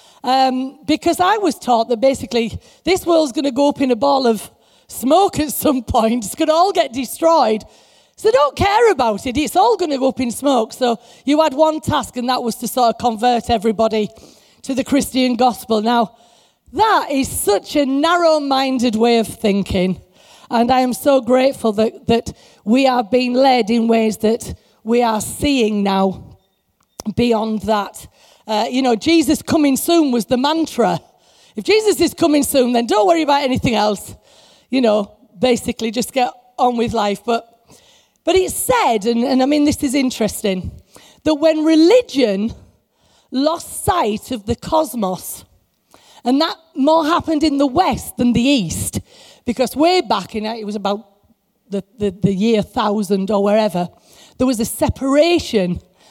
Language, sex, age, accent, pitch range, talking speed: English, female, 30-49, British, 225-295 Hz, 170 wpm